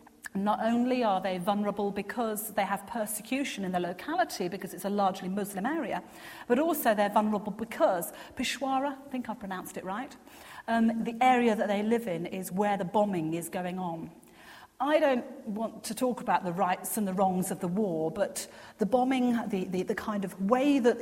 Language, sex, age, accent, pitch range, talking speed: English, female, 40-59, British, 185-250 Hz, 195 wpm